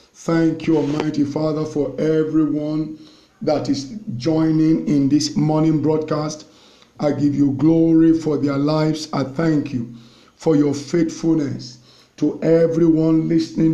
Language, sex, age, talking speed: English, male, 50-69, 125 wpm